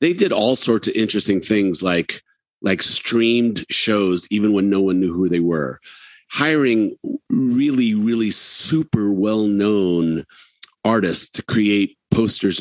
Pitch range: 95-115 Hz